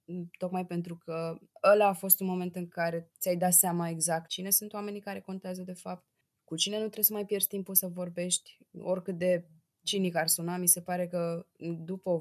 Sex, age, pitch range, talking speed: female, 20-39, 150-190 Hz, 205 wpm